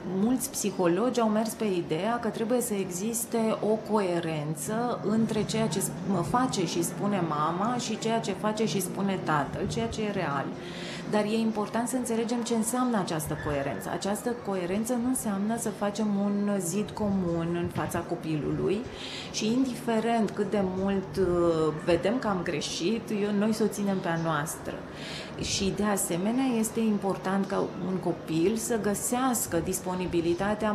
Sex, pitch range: female, 170-220 Hz